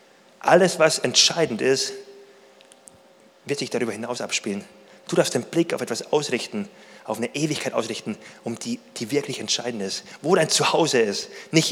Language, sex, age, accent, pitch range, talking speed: German, male, 30-49, German, 130-180 Hz, 160 wpm